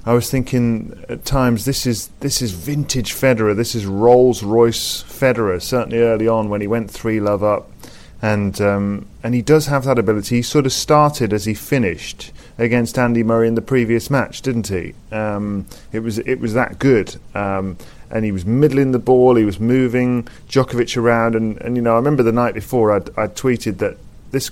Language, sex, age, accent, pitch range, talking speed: English, male, 30-49, British, 105-125 Hz, 200 wpm